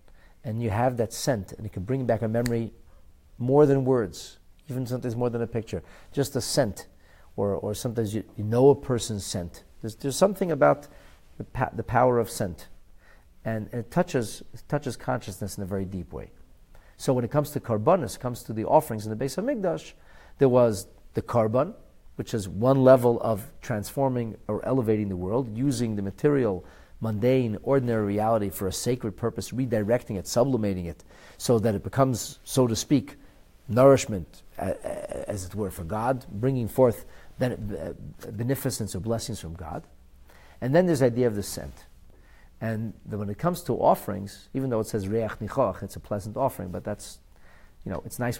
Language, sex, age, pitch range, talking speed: English, male, 40-59, 100-130 Hz, 185 wpm